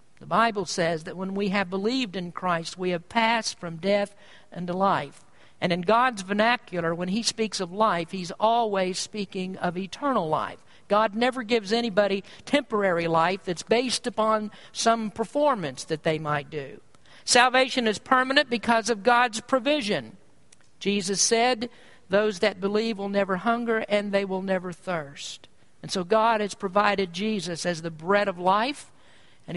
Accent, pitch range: American, 180-230 Hz